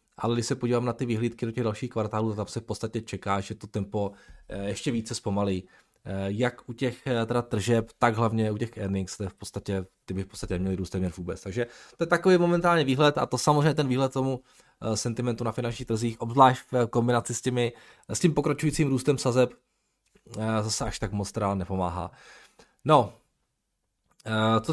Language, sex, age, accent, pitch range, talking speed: Czech, male, 20-39, native, 110-135 Hz, 180 wpm